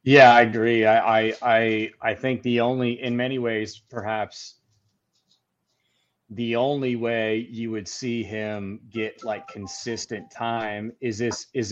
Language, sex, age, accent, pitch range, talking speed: English, male, 30-49, American, 105-125 Hz, 140 wpm